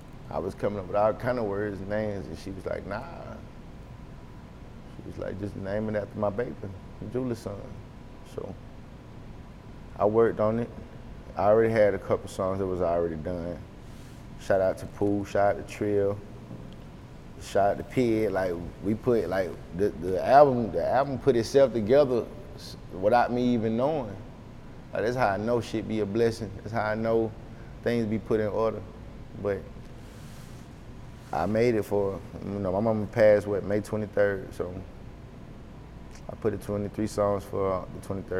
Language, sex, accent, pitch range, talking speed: English, male, American, 95-110 Hz, 170 wpm